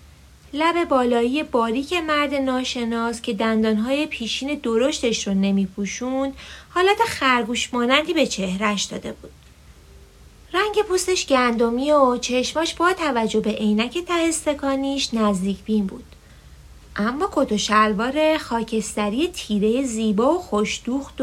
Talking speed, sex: 110 wpm, female